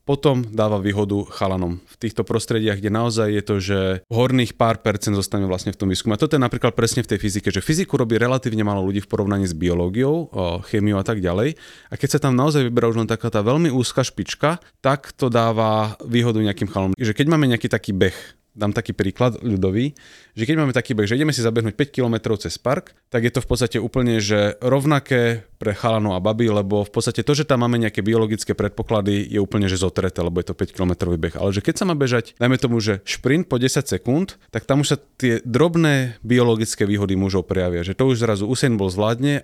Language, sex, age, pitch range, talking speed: Slovak, male, 30-49, 100-125 Hz, 220 wpm